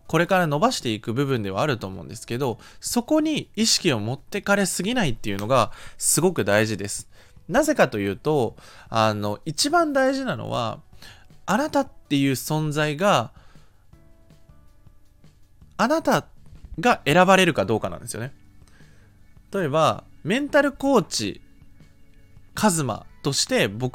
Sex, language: male, Japanese